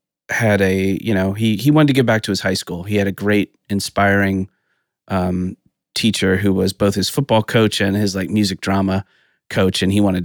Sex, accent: male, American